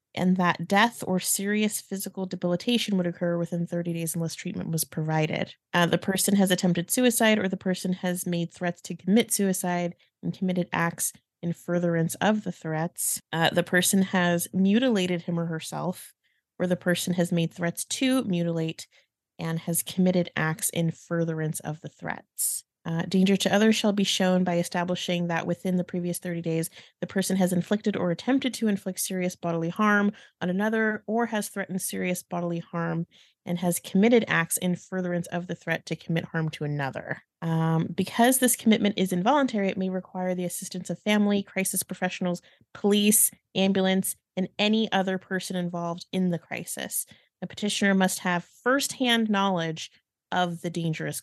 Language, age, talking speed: English, 30-49, 170 wpm